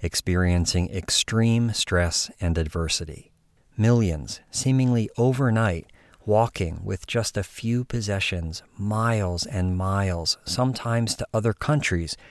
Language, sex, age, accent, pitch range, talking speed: English, male, 40-59, American, 90-115 Hz, 100 wpm